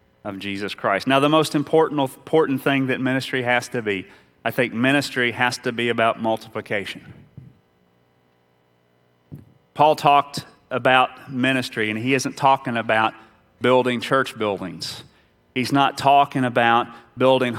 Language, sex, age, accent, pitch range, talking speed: English, male, 30-49, American, 120-145 Hz, 135 wpm